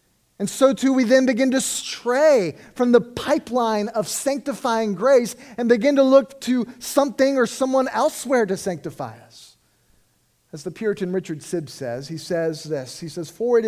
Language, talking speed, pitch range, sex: English, 170 wpm, 160-235 Hz, male